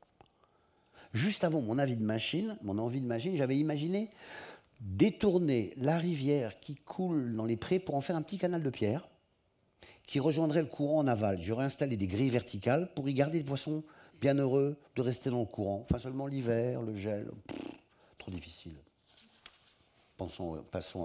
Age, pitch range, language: 50-69, 100-150 Hz, French